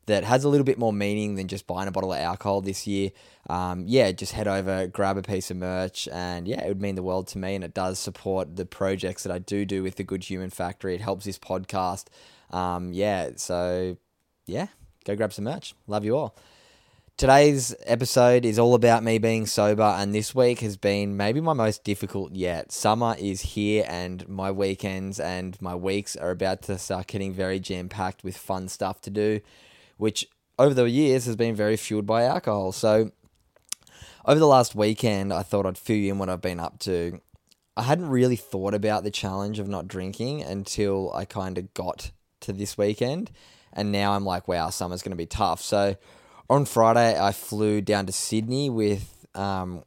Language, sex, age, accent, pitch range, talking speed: English, male, 10-29, Australian, 95-110 Hz, 200 wpm